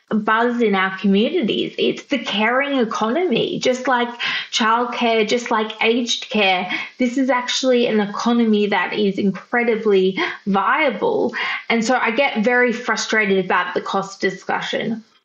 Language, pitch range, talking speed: English, 195-240 Hz, 135 wpm